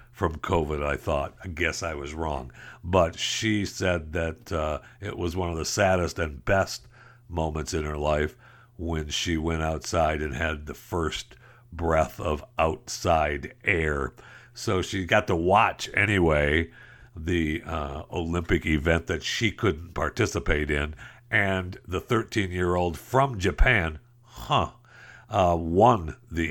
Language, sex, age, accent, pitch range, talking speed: English, male, 60-79, American, 80-120 Hz, 140 wpm